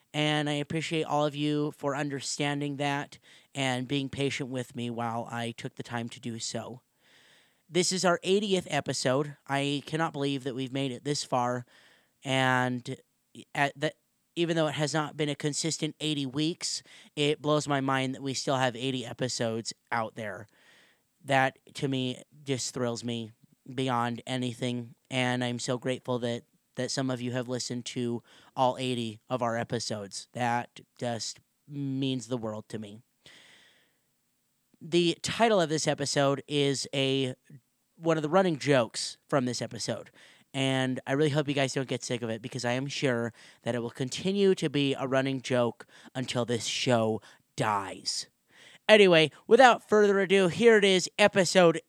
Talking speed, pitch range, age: 165 wpm, 125-155 Hz, 30-49